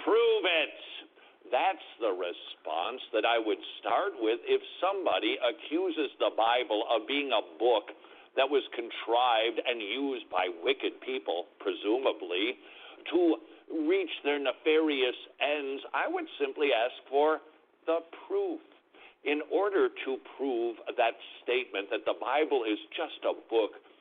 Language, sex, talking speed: English, male, 130 wpm